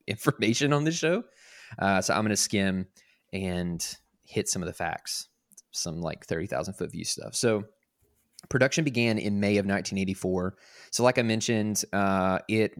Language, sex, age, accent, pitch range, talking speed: English, male, 20-39, American, 95-115 Hz, 165 wpm